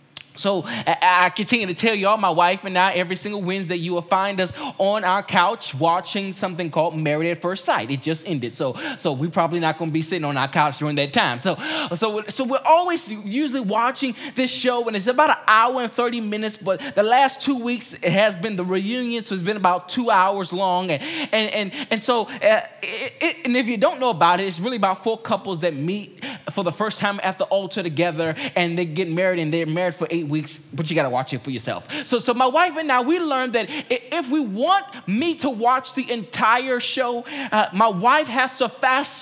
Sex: male